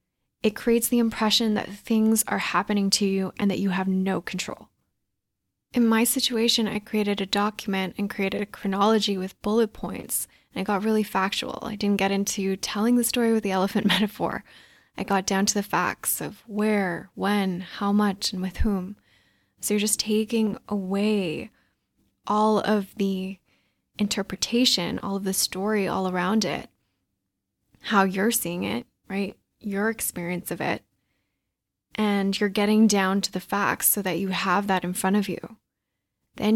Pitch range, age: 185-215 Hz, 10-29